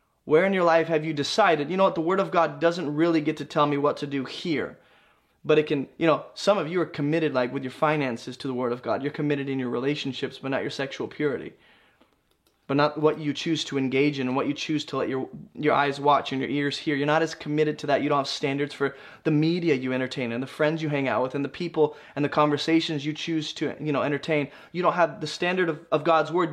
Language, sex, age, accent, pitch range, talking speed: English, male, 20-39, American, 145-175 Hz, 265 wpm